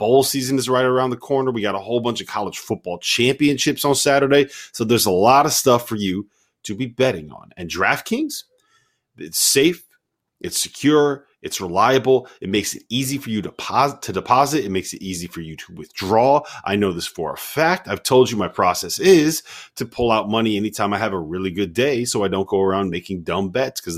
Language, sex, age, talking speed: English, male, 30-49, 220 wpm